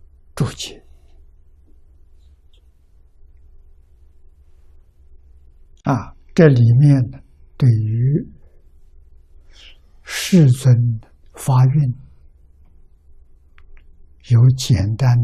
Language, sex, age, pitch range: Chinese, male, 60-79, 70-115 Hz